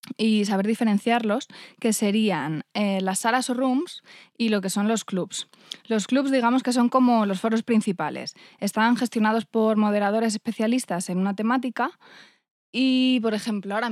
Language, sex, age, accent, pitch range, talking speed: Spanish, female, 20-39, Spanish, 195-230 Hz, 160 wpm